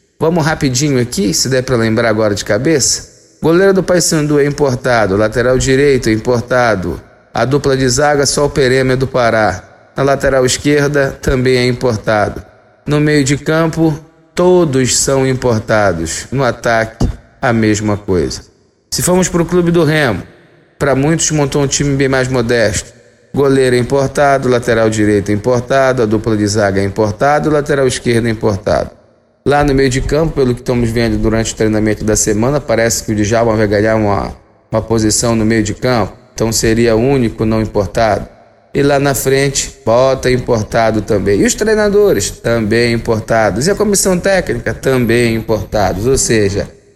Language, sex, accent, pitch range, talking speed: Portuguese, male, Brazilian, 110-140 Hz, 165 wpm